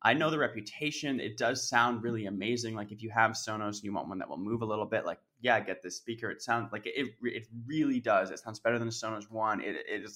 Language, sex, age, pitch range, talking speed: English, male, 20-39, 105-120 Hz, 265 wpm